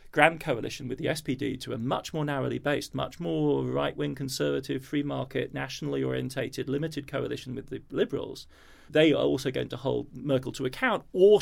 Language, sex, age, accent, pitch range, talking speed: English, male, 40-59, British, 130-155 Hz, 185 wpm